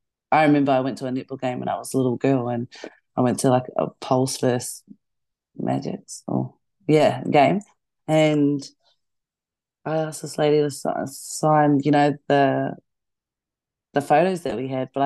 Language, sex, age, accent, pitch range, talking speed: English, female, 30-49, Australian, 125-140 Hz, 165 wpm